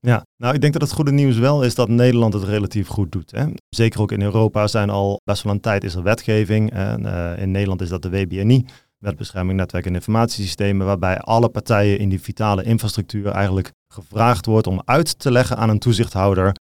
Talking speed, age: 215 wpm, 30-49